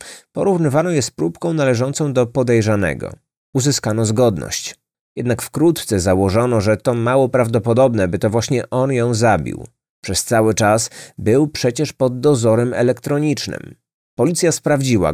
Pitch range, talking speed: 95-130 Hz, 125 wpm